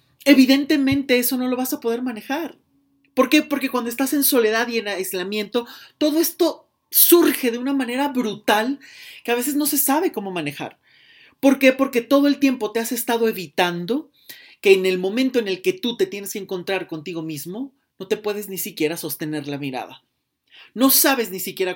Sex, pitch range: male, 185-255 Hz